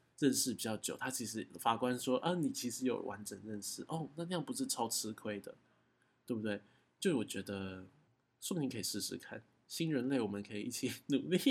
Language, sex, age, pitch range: Chinese, male, 20-39, 120-170 Hz